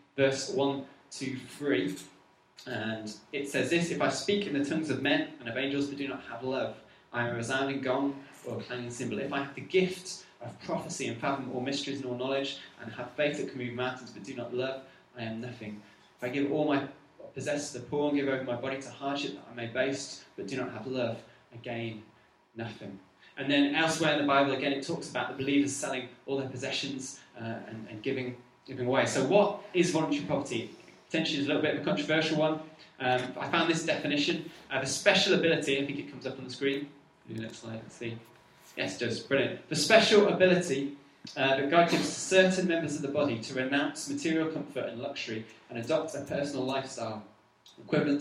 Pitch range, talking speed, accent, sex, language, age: 120-145 Hz, 215 wpm, British, male, English, 20-39